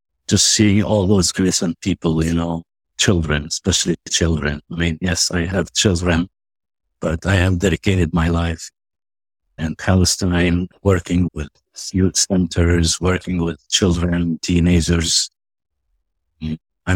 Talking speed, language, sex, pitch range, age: 120 wpm, English, male, 80-90 Hz, 60-79